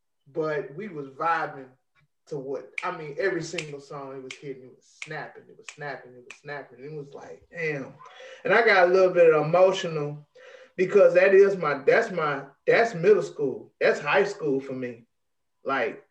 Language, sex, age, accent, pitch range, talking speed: English, male, 20-39, American, 135-185 Hz, 185 wpm